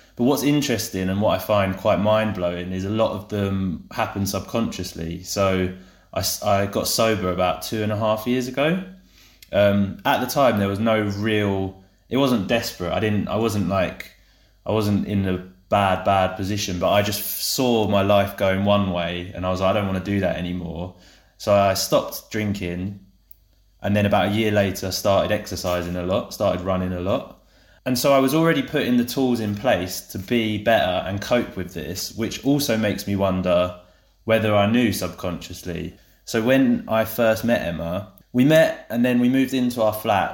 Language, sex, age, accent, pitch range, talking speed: English, male, 20-39, British, 95-110 Hz, 195 wpm